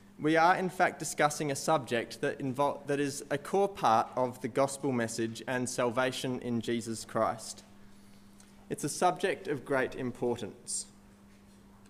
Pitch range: 120-170 Hz